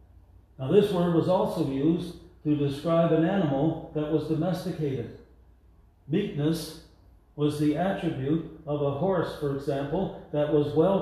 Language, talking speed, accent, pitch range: English, 135 wpm, American, 130-165 Hz